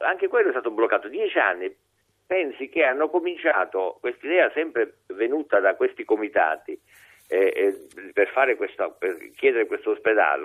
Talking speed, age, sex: 155 wpm, 50-69, male